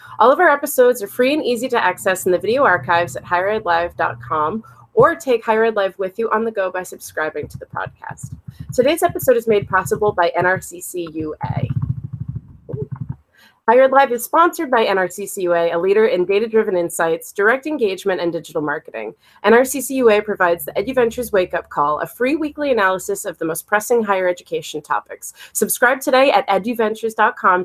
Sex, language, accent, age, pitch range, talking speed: female, English, American, 30-49, 175-245 Hz, 165 wpm